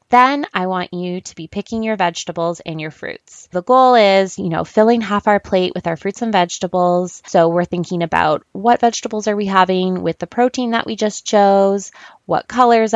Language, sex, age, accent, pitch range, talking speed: English, female, 20-39, American, 170-220 Hz, 205 wpm